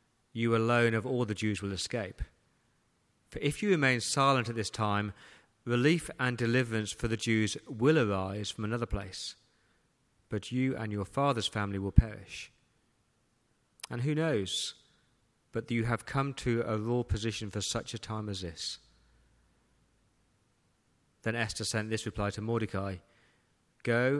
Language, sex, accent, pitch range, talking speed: English, male, British, 100-120 Hz, 150 wpm